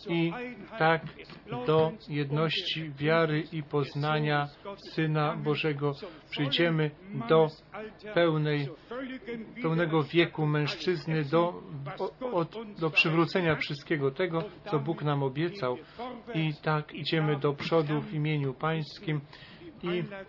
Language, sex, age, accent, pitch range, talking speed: Polish, male, 40-59, native, 150-175 Hz, 95 wpm